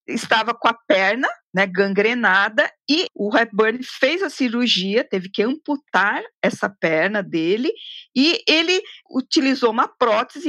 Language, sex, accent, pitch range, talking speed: Portuguese, female, Brazilian, 230-325 Hz, 130 wpm